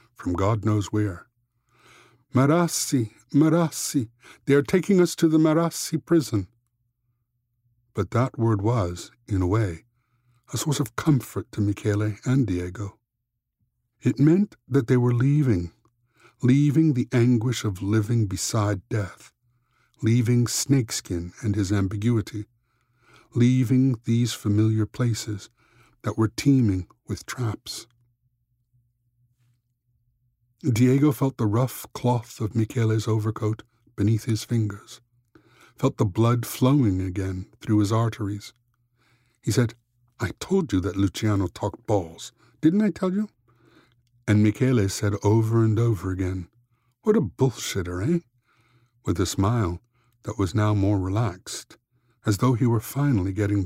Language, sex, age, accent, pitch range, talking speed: English, male, 60-79, American, 110-125 Hz, 125 wpm